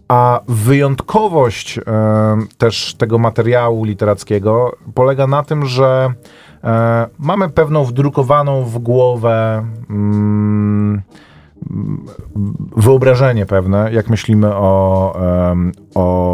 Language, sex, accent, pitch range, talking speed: Polish, male, native, 105-130 Hz, 75 wpm